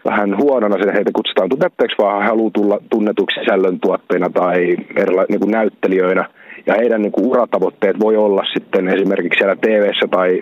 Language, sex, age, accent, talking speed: Finnish, male, 30-49, native, 150 wpm